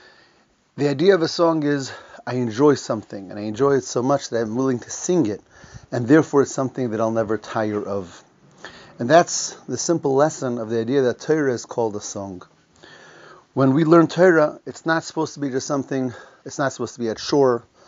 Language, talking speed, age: English, 210 wpm, 30-49